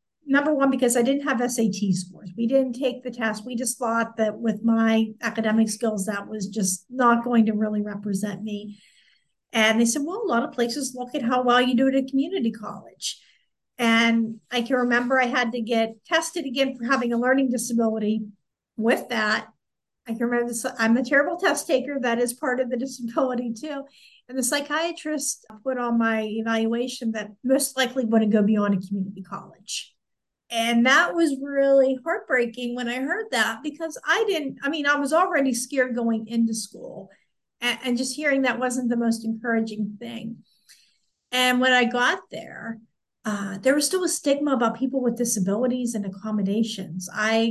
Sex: female